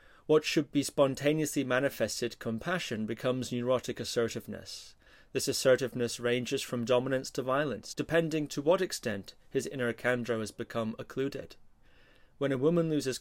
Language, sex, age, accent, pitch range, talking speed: English, male, 30-49, British, 120-145 Hz, 135 wpm